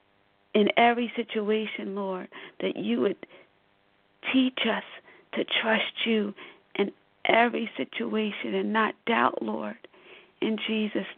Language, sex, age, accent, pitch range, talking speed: English, female, 50-69, American, 195-215 Hz, 115 wpm